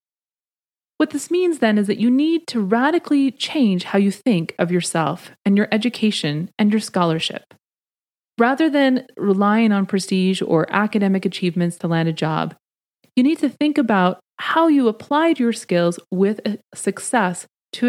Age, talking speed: 30-49, 160 wpm